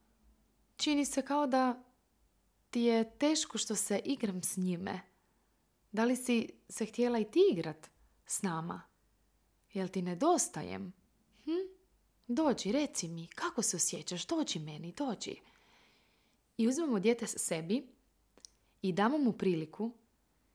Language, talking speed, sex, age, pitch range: Croatian, 130 wpm, female, 20-39, 170-220 Hz